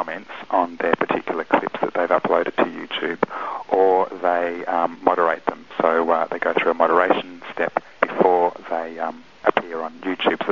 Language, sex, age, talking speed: English, male, 30-49, 170 wpm